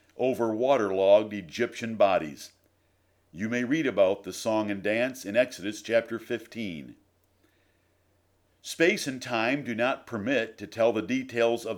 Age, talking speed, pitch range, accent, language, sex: 50-69, 140 wpm, 100-145 Hz, American, English, male